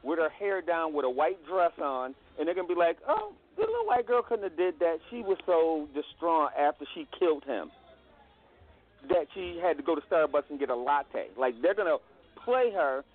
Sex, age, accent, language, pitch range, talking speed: male, 40-59, American, English, 140-190 Hz, 225 wpm